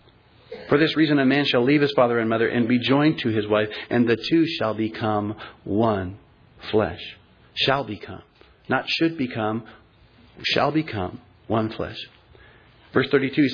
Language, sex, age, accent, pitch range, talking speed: English, male, 40-59, American, 110-140 Hz, 155 wpm